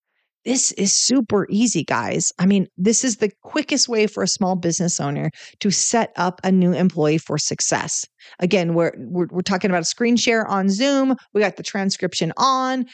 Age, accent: 40-59, American